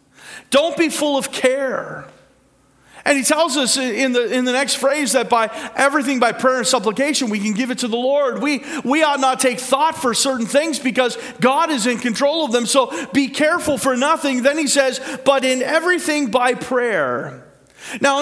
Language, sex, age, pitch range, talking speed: English, male, 40-59, 225-275 Hz, 195 wpm